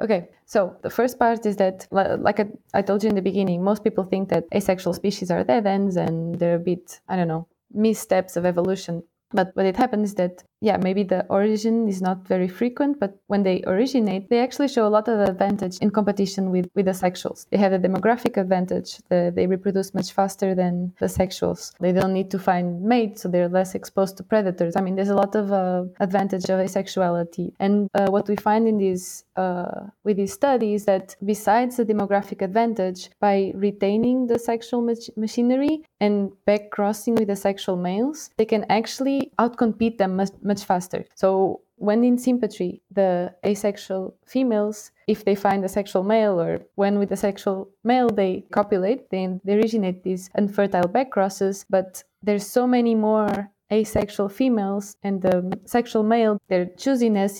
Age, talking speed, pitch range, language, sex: 20-39, 185 wpm, 190-215 Hz, English, female